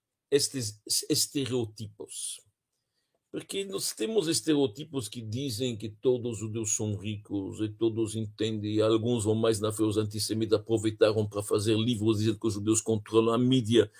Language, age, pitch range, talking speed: Portuguese, 60-79, 110-135 Hz, 160 wpm